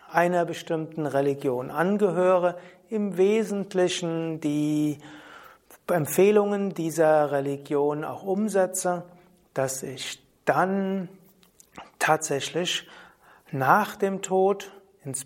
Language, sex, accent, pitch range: German, male, German, 145-190 Hz